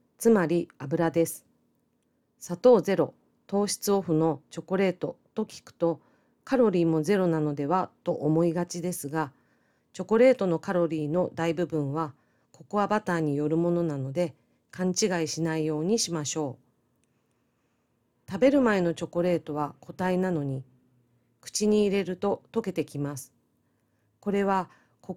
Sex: female